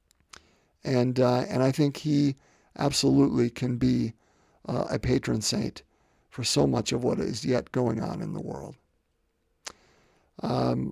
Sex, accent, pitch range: male, American, 110-145 Hz